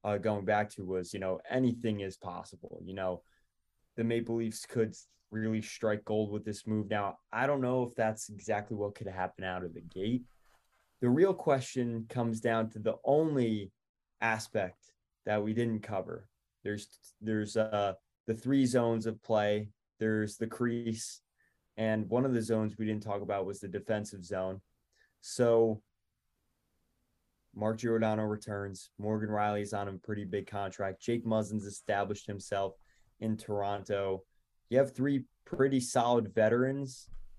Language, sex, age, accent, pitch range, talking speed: English, male, 20-39, American, 105-115 Hz, 155 wpm